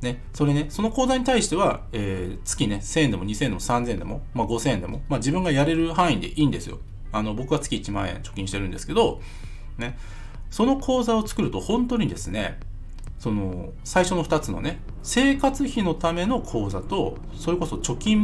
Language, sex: Japanese, male